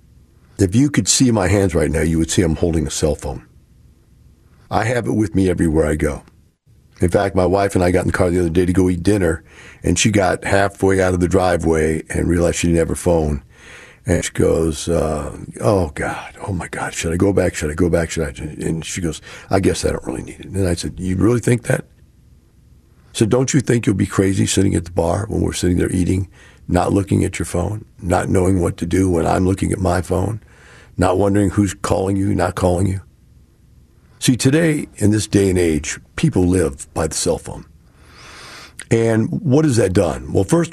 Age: 50-69